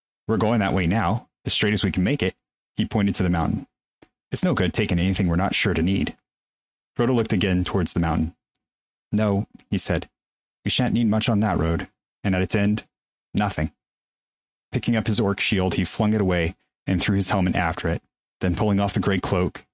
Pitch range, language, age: 85-105 Hz, English, 30-49